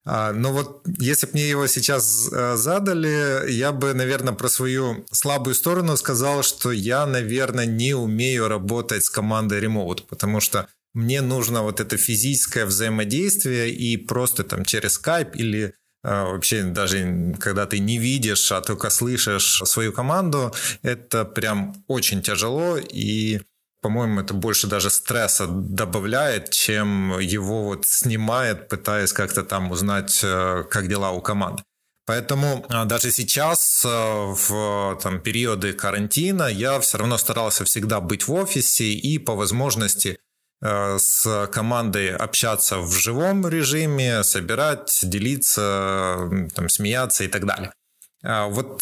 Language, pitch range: Ukrainian, 100-130 Hz